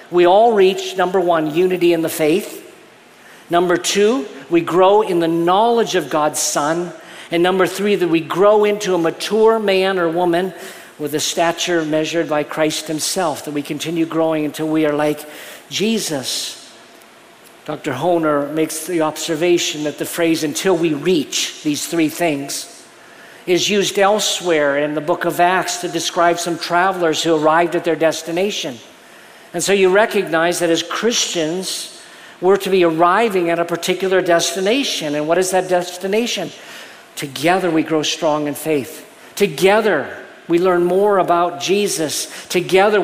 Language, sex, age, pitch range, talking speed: English, male, 50-69, 160-190 Hz, 155 wpm